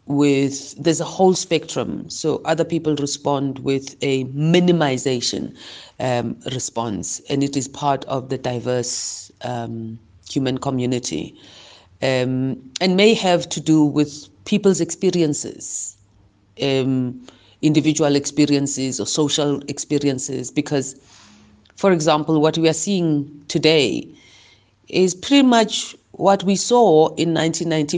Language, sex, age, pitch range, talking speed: English, female, 40-59, 120-150 Hz, 115 wpm